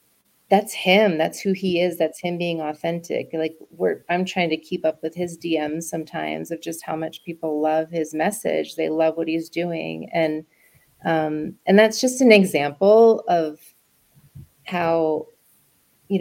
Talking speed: 165 wpm